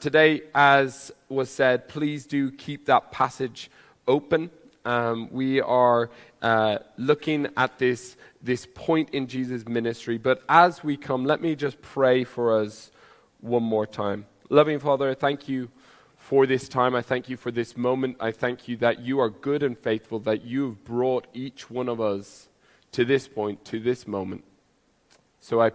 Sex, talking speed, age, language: male, 170 wpm, 20-39, English